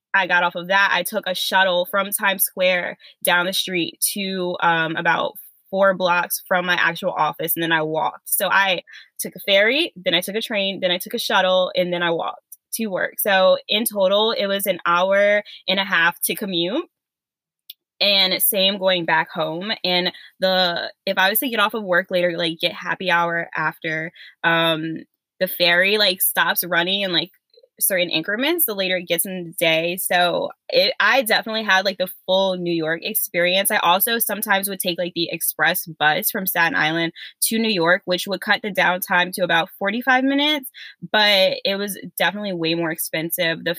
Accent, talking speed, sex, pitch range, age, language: American, 195 wpm, female, 170-200 Hz, 10-29, English